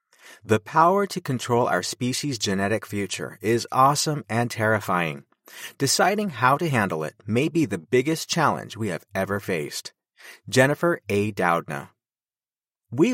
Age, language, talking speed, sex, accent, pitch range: 30-49, English, 135 wpm, male, American, 105-155 Hz